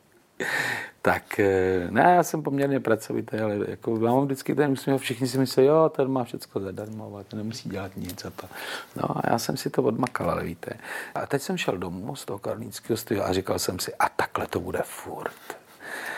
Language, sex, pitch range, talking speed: Czech, male, 110-155 Hz, 195 wpm